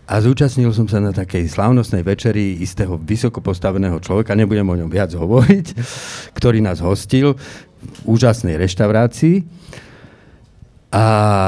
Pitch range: 95-120 Hz